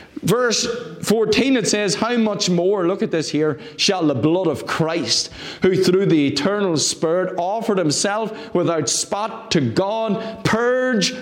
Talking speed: 150 wpm